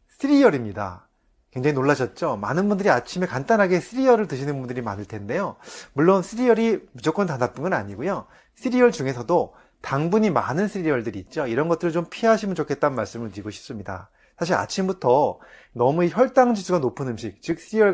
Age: 30-49